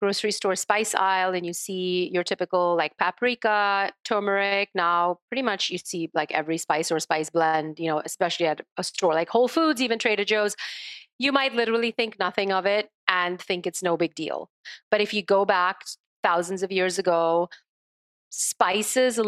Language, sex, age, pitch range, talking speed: English, female, 30-49, 175-210 Hz, 180 wpm